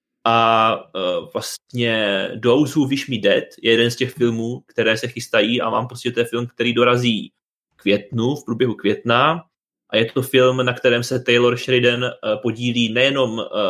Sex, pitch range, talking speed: male, 115-130 Hz, 160 wpm